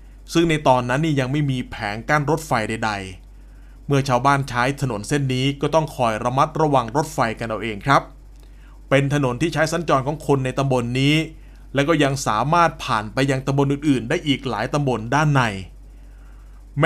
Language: Thai